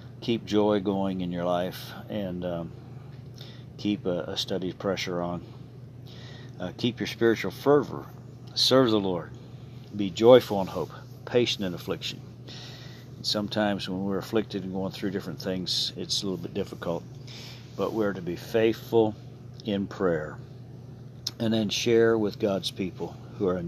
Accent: American